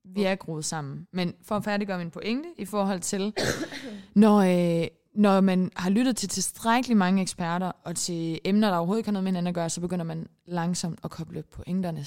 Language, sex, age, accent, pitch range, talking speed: English, female, 20-39, Danish, 175-205 Hz, 205 wpm